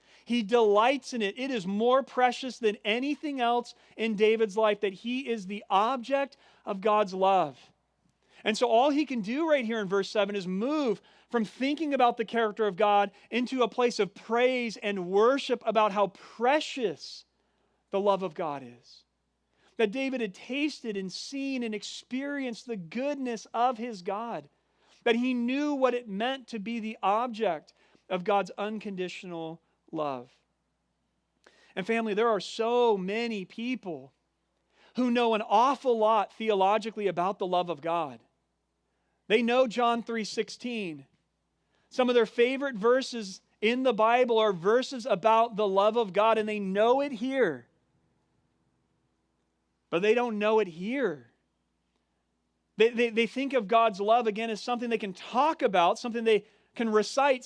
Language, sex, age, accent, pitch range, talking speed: English, male, 40-59, American, 200-245 Hz, 160 wpm